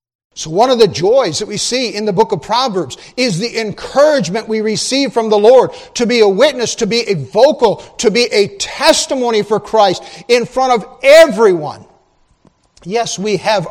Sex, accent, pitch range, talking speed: male, American, 155-215 Hz, 185 wpm